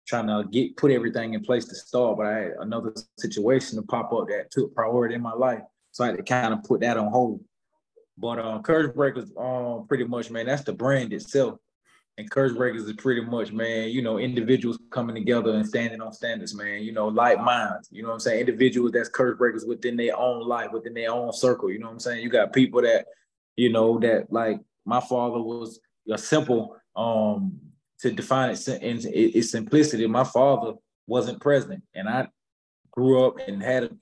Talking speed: 210 wpm